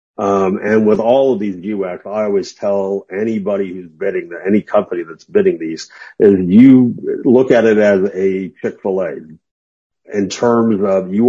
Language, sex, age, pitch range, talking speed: English, male, 50-69, 95-120 Hz, 175 wpm